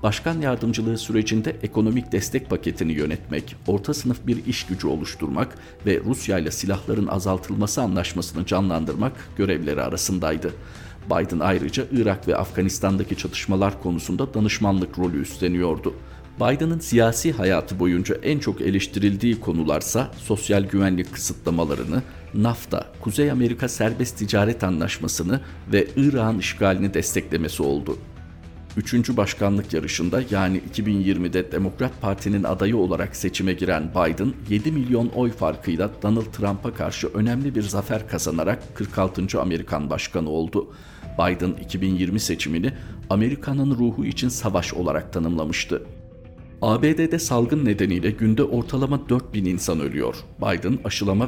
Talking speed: 120 wpm